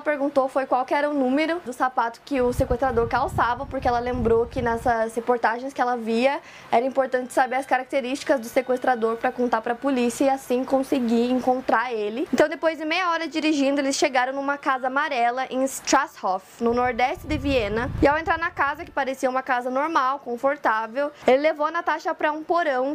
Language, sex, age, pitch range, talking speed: Portuguese, female, 20-39, 250-295 Hz, 195 wpm